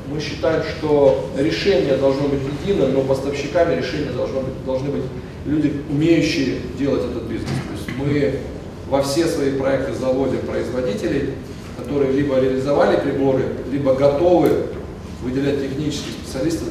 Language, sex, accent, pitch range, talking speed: Russian, male, native, 115-140 Hz, 125 wpm